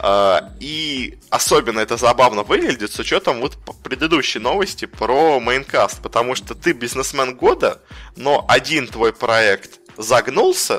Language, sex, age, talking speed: Russian, male, 20-39, 130 wpm